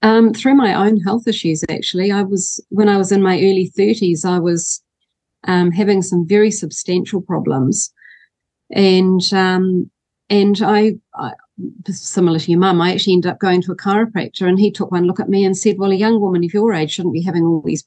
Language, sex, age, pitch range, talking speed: English, female, 40-59, 175-200 Hz, 210 wpm